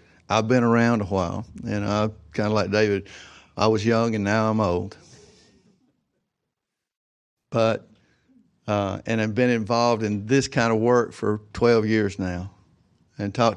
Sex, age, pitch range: male, 60-79, 95-115 Hz